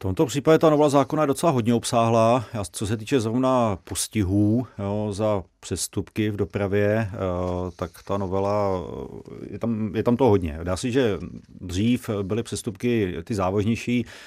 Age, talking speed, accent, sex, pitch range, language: 40-59, 165 wpm, native, male, 90-105 Hz, Czech